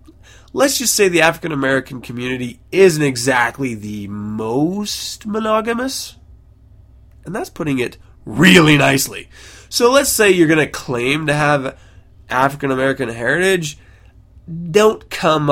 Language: English